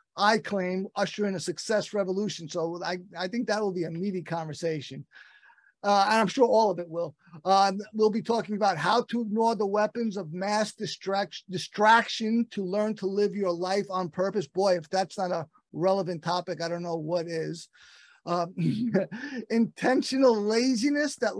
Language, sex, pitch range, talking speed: English, male, 180-225 Hz, 175 wpm